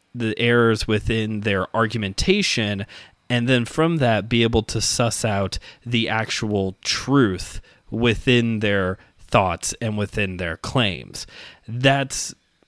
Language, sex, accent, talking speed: English, male, American, 120 wpm